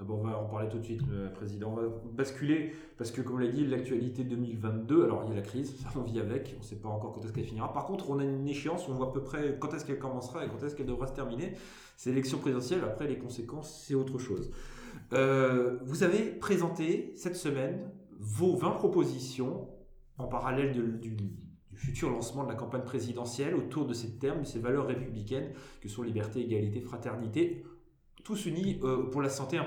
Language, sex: French, male